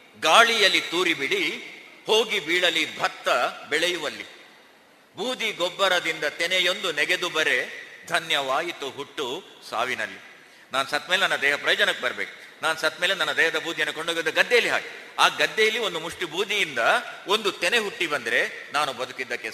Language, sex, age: Kannada, male, 50-69